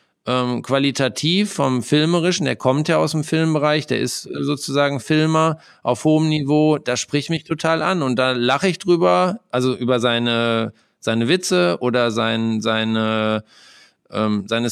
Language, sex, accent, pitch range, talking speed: German, male, German, 115-145 Hz, 150 wpm